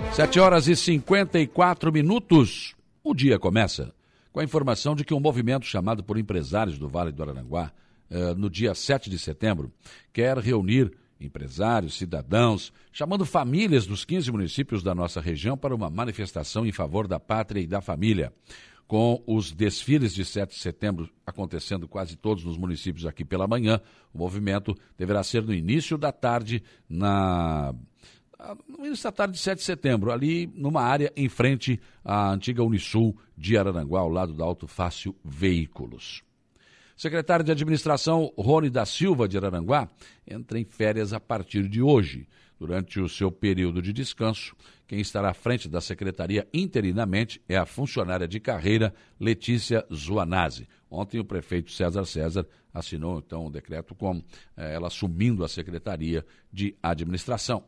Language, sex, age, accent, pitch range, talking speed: Portuguese, male, 60-79, Brazilian, 90-120 Hz, 155 wpm